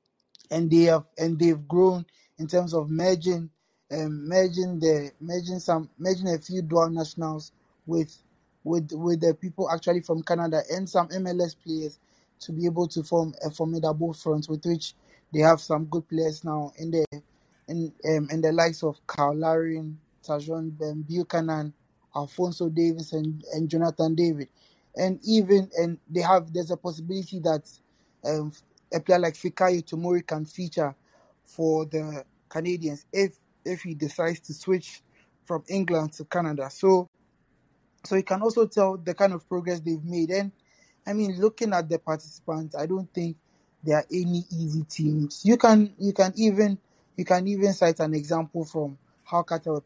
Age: 20-39